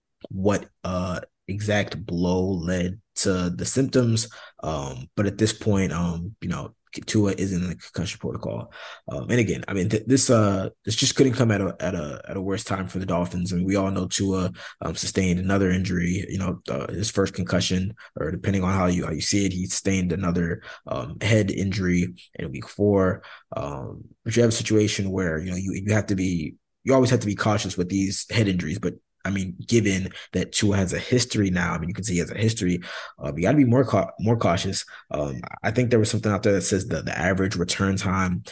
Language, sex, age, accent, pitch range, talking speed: English, male, 20-39, American, 90-110 Hz, 230 wpm